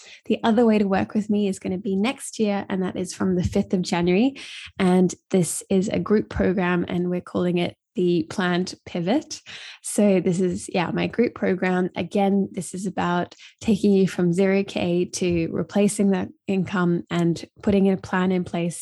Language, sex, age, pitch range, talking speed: English, female, 20-39, 180-205 Hz, 190 wpm